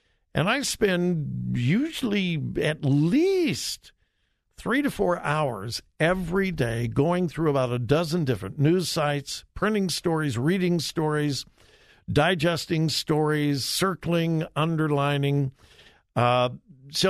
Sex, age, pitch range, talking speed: male, 60-79, 125-175 Hz, 105 wpm